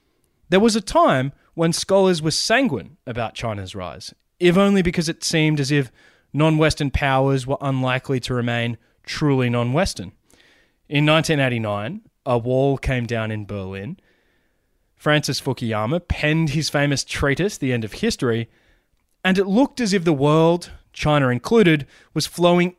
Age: 20-39